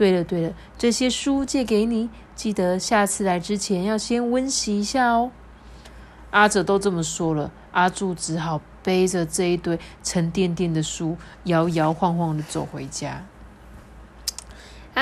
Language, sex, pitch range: Chinese, female, 170-230 Hz